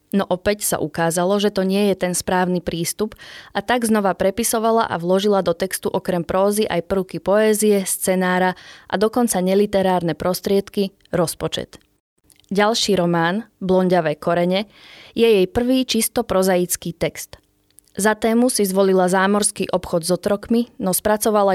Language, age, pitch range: Slovak, 20-39, 180-215 Hz